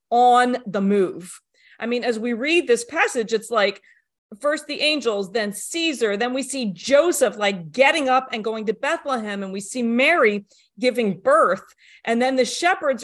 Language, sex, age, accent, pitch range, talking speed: English, female, 40-59, American, 200-255 Hz, 175 wpm